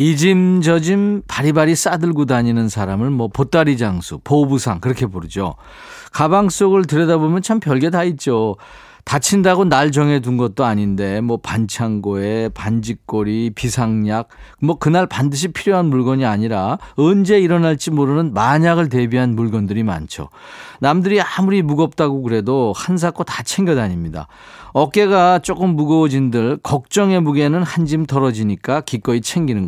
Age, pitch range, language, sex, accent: 40-59, 115-170 Hz, Korean, male, native